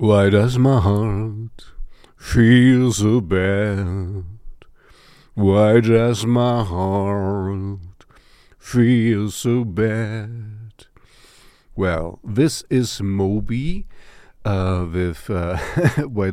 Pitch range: 95-120 Hz